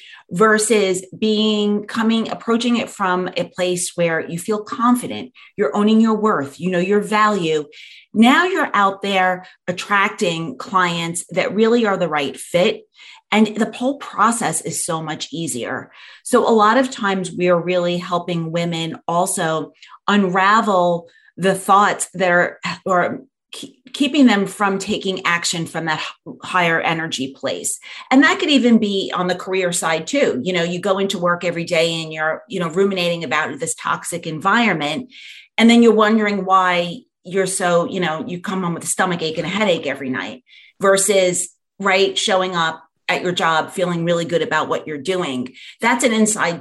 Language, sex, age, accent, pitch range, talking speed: English, female, 30-49, American, 170-215 Hz, 170 wpm